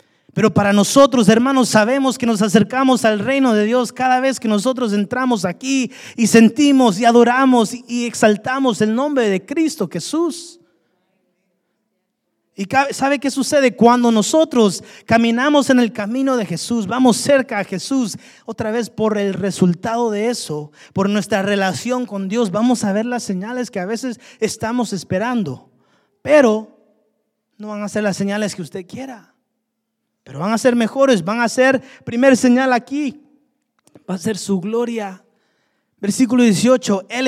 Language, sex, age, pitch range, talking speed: Spanish, male, 30-49, 200-255 Hz, 155 wpm